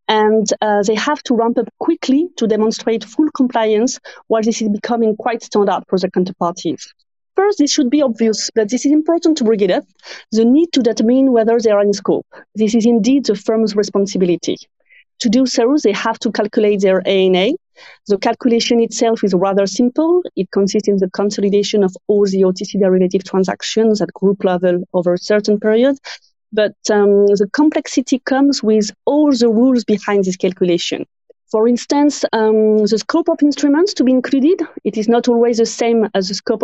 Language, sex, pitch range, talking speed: English, female, 195-245 Hz, 185 wpm